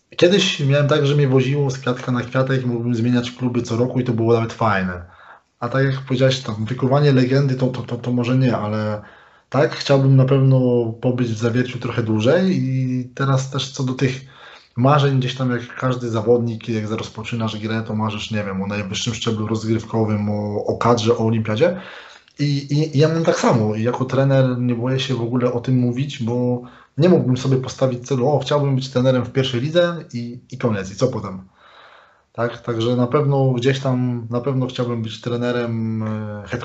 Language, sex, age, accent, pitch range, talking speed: Polish, male, 20-39, native, 115-135 Hz, 195 wpm